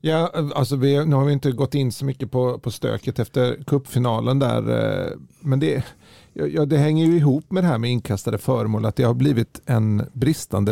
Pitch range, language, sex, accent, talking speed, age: 115-145 Hz, Swedish, male, native, 200 wpm, 40-59